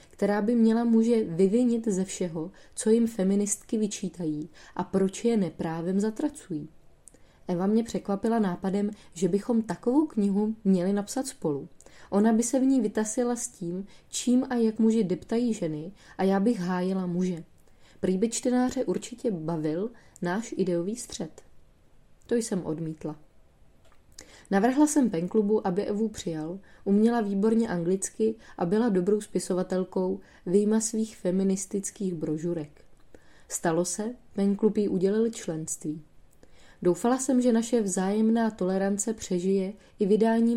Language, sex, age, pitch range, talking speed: Czech, female, 20-39, 185-225 Hz, 130 wpm